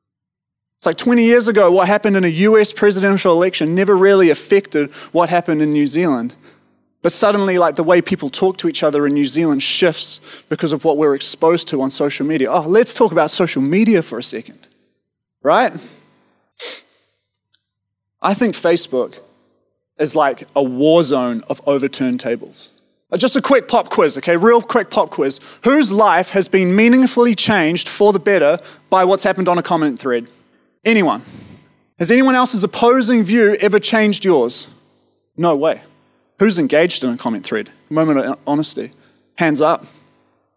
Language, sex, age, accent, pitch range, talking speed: English, male, 30-49, Australian, 150-210 Hz, 165 wpm